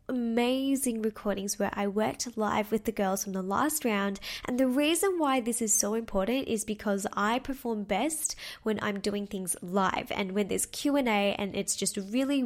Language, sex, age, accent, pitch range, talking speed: English, female, 10-29, Australian, 200-245 Hz, 190 wpm